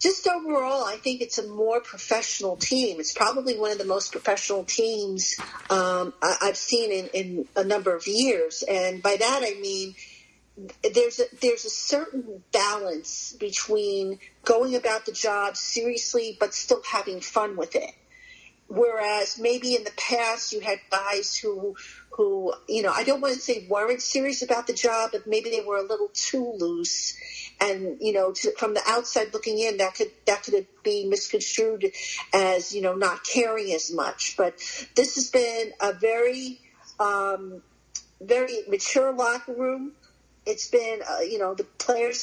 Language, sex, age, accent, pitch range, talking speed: English, female, 50-69, American, 205-285 Hz, 170 wpm